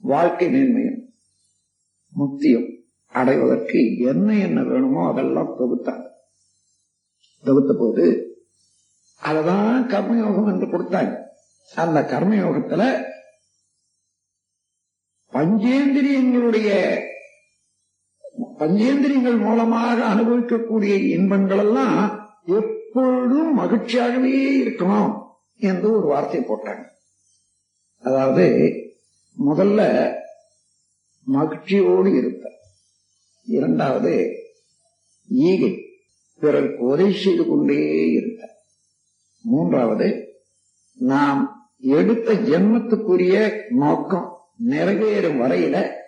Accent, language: native, Tamil